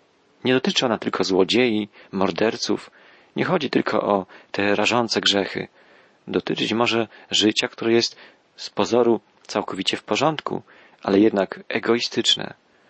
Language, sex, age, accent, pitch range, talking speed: Polish, male, 40-59, native, 100-120 Hz, 120 wpm